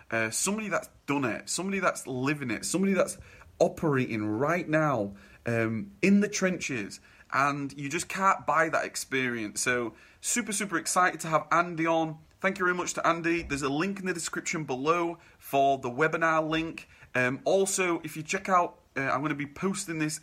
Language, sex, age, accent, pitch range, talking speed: English, male, 30-49, British, 125-165 Hz, 185 wpm